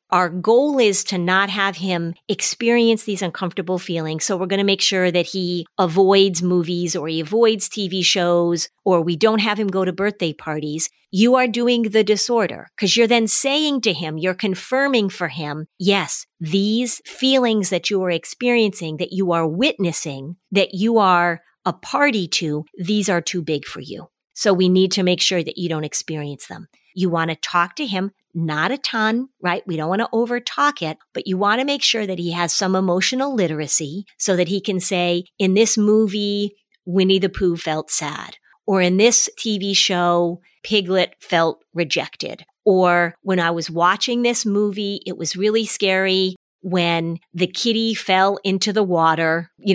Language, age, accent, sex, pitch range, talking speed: English, 40-59, American, female, 175-210 Hz, 185 wpm